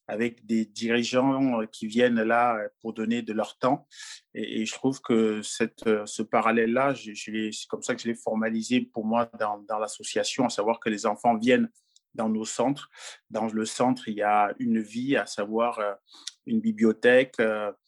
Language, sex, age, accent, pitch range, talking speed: French, male, 30-49, French, 110-130 Hz, 170 wpm